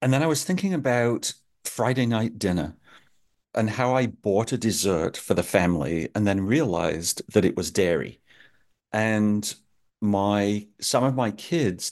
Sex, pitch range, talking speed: male, 95-125 Hz, 155 wpm